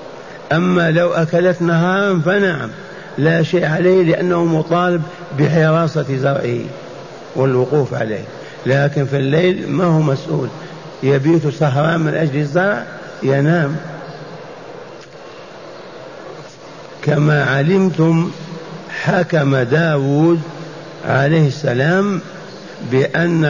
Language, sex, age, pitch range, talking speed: Arabic, male, 60-79, 140-175 Hz, 85 wpm